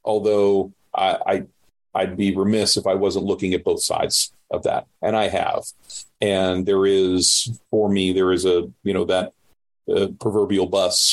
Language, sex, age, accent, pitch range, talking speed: English, male, 40-59, American, 85-100 Hz, 175 wpm